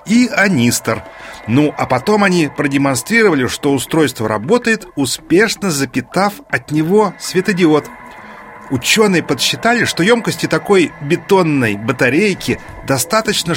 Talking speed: 100 wpm